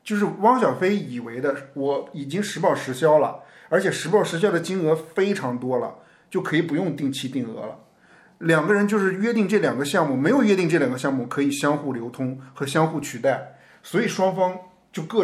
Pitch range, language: 135-175 Hz, Chinese